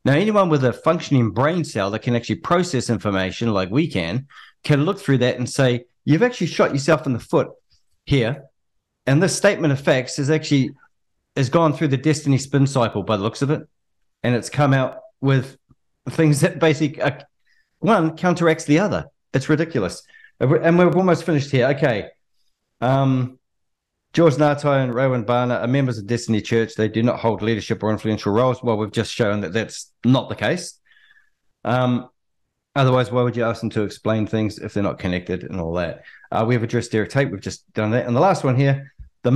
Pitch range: 115-155 Hz